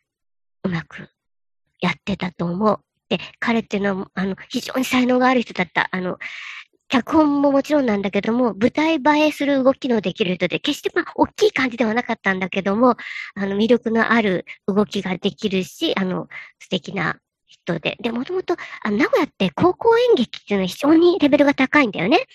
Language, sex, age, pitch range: Japanese, male, 50-69, 200-295 Hz